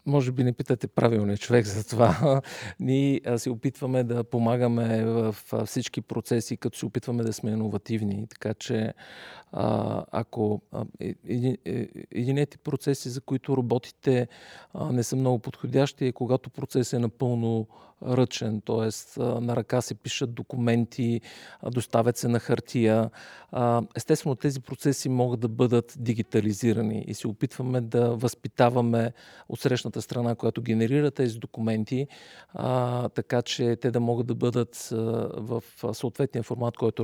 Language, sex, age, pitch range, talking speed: Bulgarian, male, 50-69, 115-135 Hz, 130 wpm